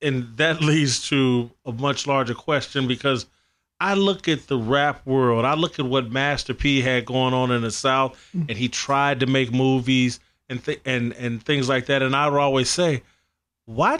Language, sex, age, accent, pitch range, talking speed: English, male, 30-49, American, 125-160 Hz, 195 wpm